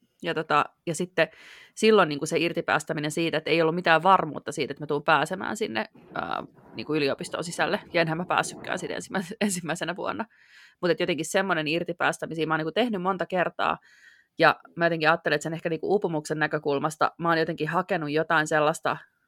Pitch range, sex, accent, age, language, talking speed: 155-175 Hz, female, native, 20-39, Finnish, 175 wpm